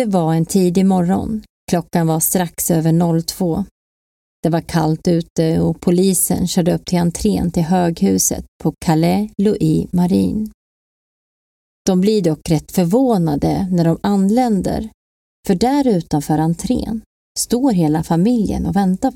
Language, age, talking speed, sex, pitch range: Swedish, 30-49, 135 wpm, female, 165-205 Hz